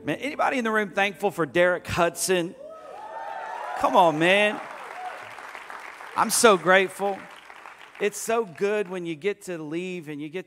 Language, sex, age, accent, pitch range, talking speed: English, male, 40-59, American, 150-195 Hz, 150 wpm